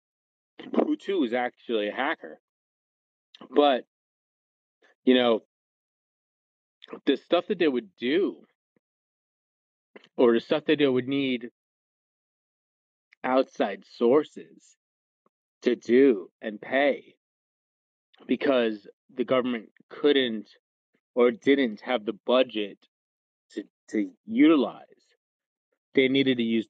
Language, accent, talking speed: English, American, 100 wpm